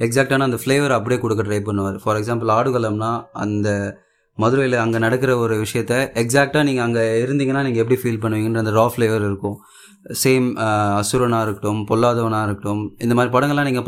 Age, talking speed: 30-49, 160 wpm